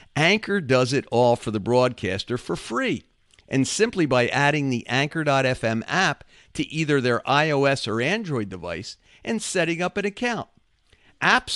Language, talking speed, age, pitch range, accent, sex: English, 150 wpm, 50-69, 115-160 Hz, American, male